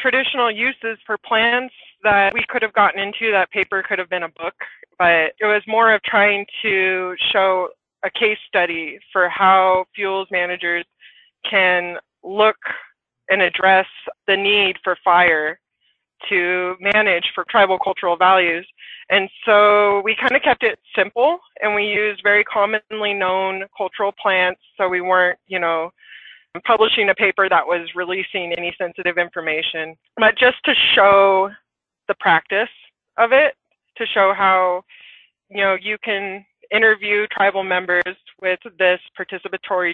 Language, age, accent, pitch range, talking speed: English, 20-39, American, 180-205 Hz, 145 wpm